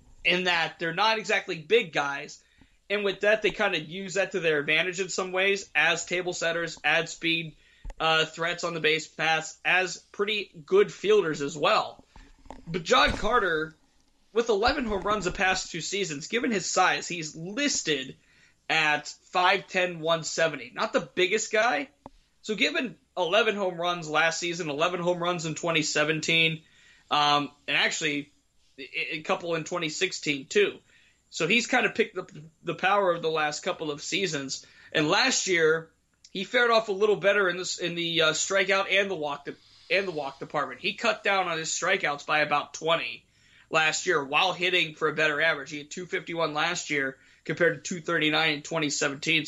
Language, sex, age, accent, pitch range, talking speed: English, male, 20-39, American, 155-195 Hz, 175 wpm